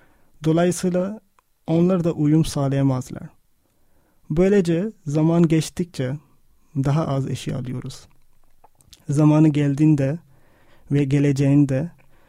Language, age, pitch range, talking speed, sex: Turkish, 40-59, 135-160 Hz, 75 wpm, male